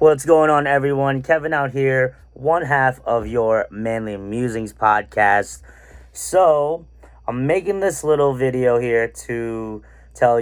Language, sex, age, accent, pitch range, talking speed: English, male, 30-49, American, 110-135 Hz, 130 wpm